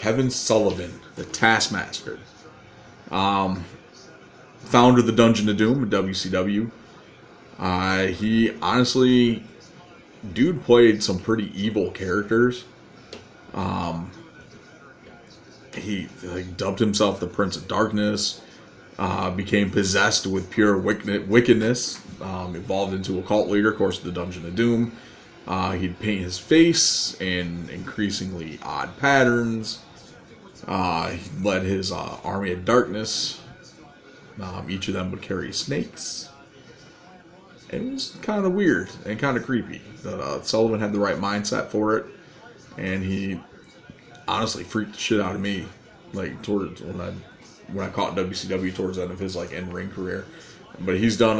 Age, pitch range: 30-49, 95-115 Hz